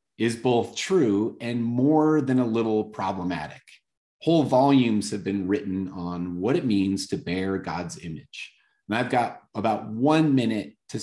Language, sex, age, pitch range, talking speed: English, male, 30-49, 100-135 Hz, 160 wpm